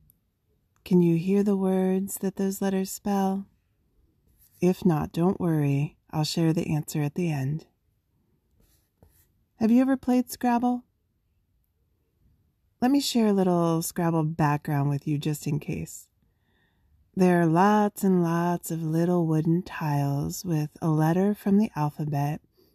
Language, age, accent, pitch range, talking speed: English, 30-49, American, 150-190 Hz, 135 wpm